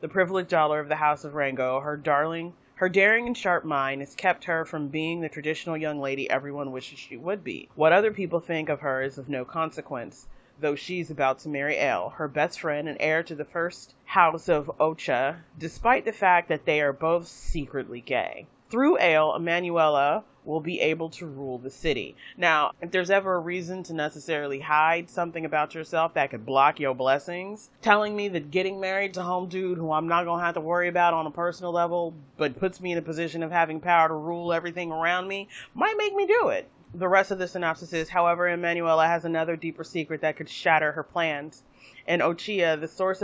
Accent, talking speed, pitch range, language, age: American, 210 wpm, 145-175 Hz, English, 30-49